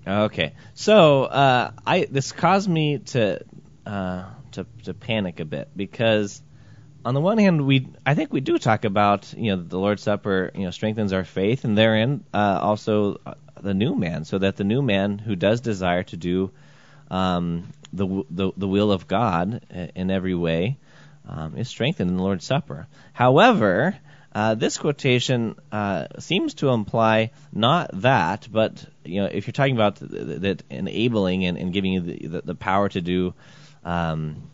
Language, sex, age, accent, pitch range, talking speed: English, male, 20-39, American, 95-130 Hz, 175 wpm